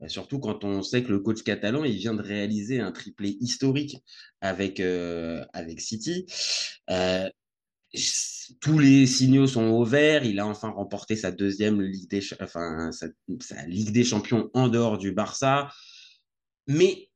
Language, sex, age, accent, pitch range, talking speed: French, male, 20-39, French, 100-135 Hz, 155 wpm